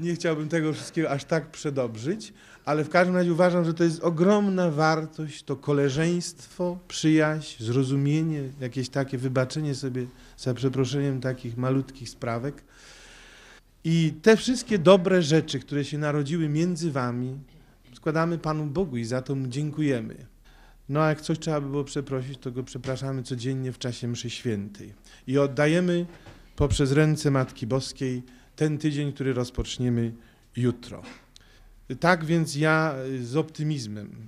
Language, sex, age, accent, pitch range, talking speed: Polish, male, 40-59, native, 125-155 Hz, 135 wpm